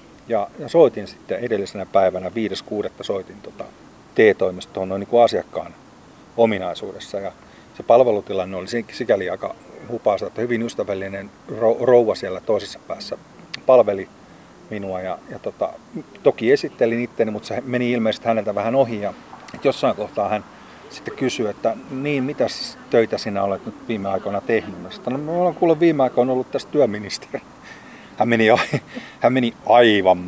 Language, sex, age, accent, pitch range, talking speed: Finnish, male, 30-49, native, 100-130 Hz, 150 wpm